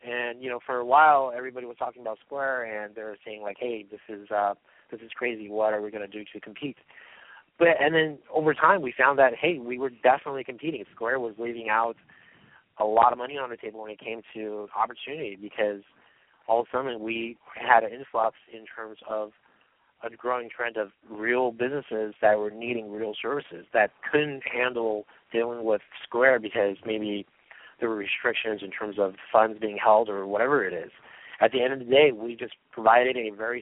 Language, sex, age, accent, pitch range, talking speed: English, male, 30-49, American, 105-120 Hz, 205 wpm